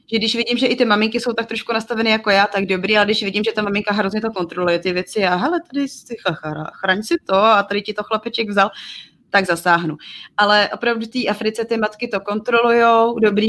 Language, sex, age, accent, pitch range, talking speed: Czech, female, 20-39, native, 185-220 Hz, 230 wpm